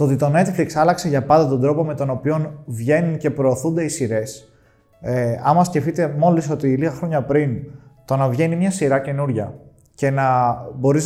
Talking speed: 180 wpm